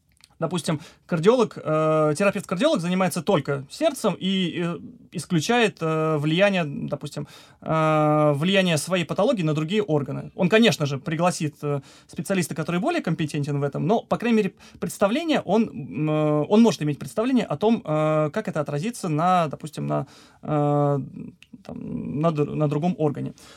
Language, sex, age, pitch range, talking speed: Russian, male, 20-39, 150-195 Hz, 145 wpm